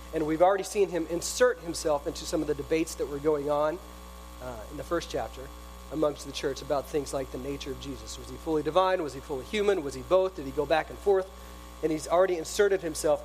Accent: American